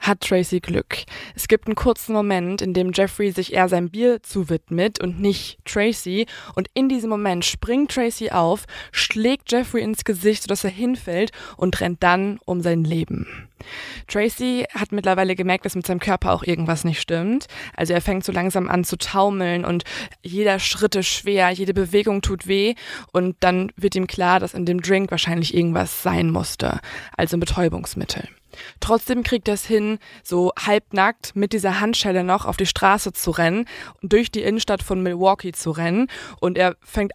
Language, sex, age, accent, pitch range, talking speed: German, female, 20-39, German, 180-210 Hz, 180 wpm